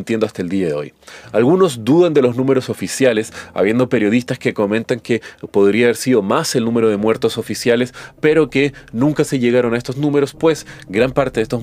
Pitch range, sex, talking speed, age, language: 115-140 Hz, male, 200 wpm, 30-49, Spanish